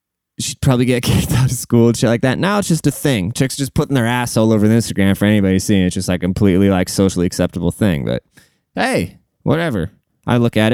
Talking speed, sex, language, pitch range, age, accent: 235 wpm, male, English, 100-135 Hz, 20-39, American